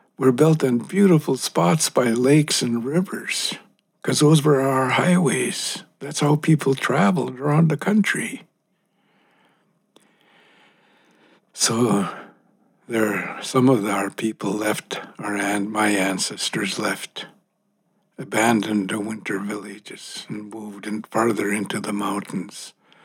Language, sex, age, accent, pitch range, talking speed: English, male, 60-79, American, 110-155 Hz, 110 wpm